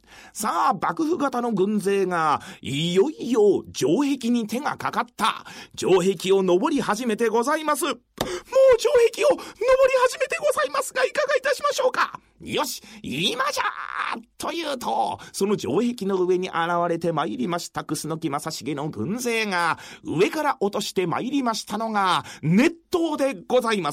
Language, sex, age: Japanese, male, 40-59